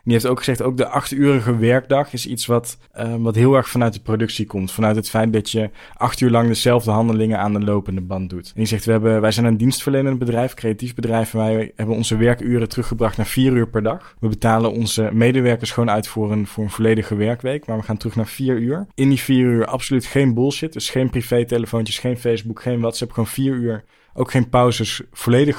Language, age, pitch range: Dutch, 20-39, 105-120 Hz